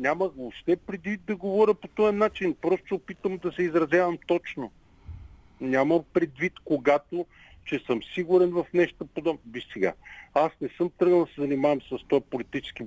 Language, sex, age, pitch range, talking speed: Bulgarian, male, 50-69, 115-160 Hz, 170 wpm